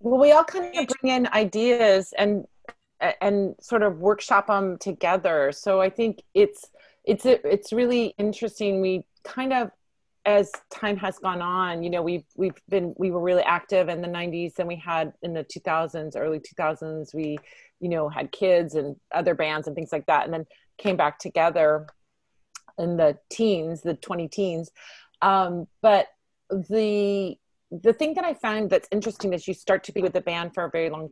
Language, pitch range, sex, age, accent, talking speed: English, 170-205 Hz, female, 30-49, American, 190 wpm